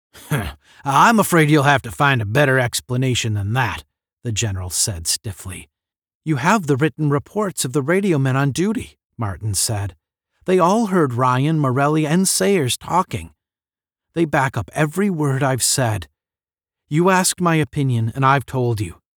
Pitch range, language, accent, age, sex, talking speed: 110-165 Hz, English, American, 40-59, male, 160 wpm